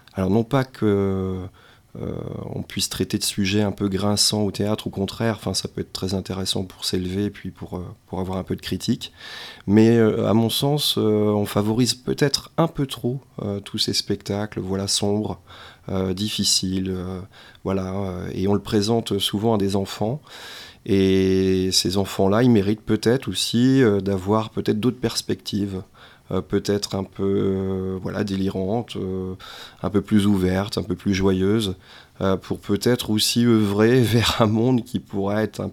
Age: 30-49